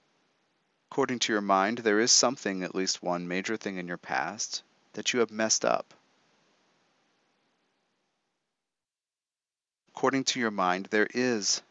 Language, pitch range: English, 95-115 Hz